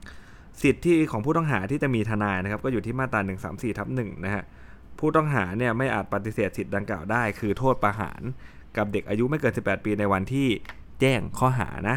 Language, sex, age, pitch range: Thai, male, 20-39, 95-125 Hz